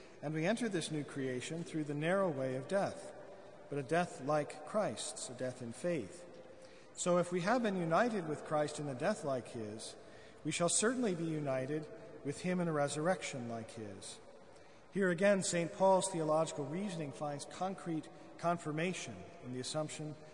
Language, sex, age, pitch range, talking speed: English, male, 40-59, 130-175 Hz, 170 wpm